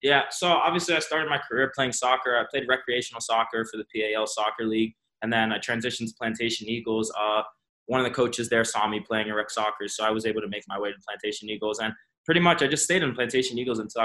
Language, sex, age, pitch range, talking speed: English, male, 20-39, 110-120 Hz, 250 wpm